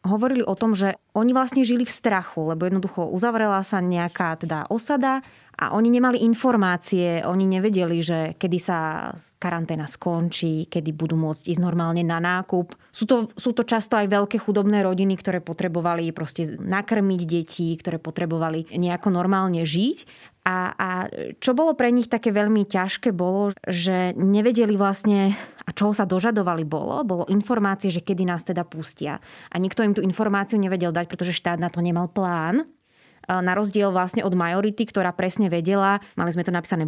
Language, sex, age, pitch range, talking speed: Slovak, female, 20-39, 175-210 Hz, 170 wpm